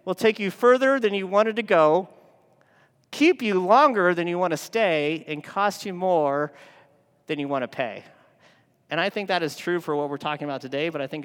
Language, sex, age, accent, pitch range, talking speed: English, male, 40-59, American, 145-190 Hz, 220 wpm